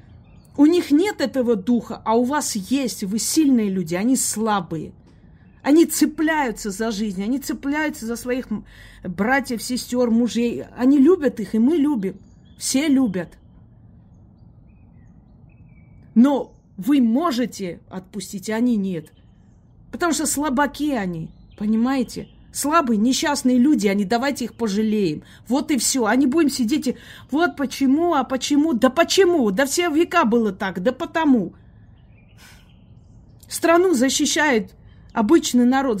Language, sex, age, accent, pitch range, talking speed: Russian, female, 30-49, native, 215-280 Hz, 125 wpm